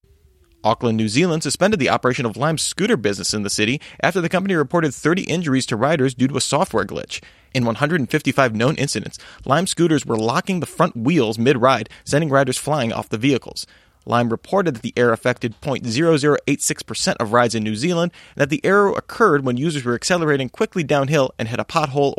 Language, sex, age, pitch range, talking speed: English, male, 30-49, 115-150 Hz, 190 wpm